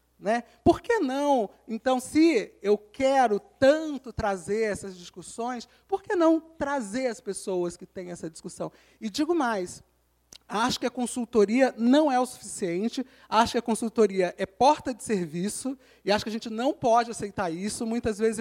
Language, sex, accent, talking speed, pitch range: Portuguese, male, Brazilian, 170 wpm, 200-290 Hz